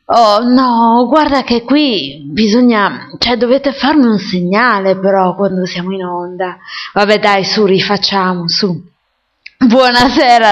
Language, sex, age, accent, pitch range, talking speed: Italian, female, 20-39, native, 200-260 Hz, 125 wpm